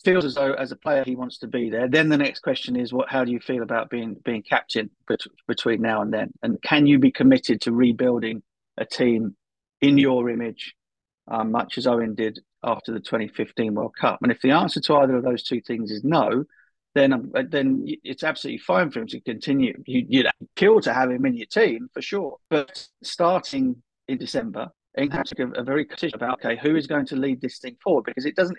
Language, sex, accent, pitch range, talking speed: English, male, British, 125-155 Hz, 225 wpm